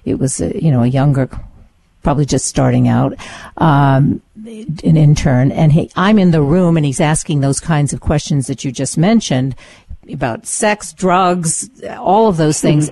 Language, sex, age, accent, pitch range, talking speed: English, female, 50-69, American, 140-180 Hz, 175 wpm